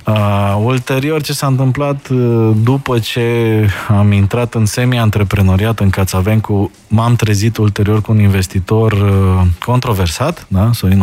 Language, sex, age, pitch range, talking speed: Romanian, male, 20-39, 95-120 Hz, 110 wpm